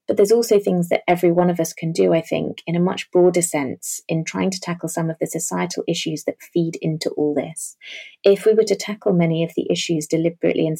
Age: 30-49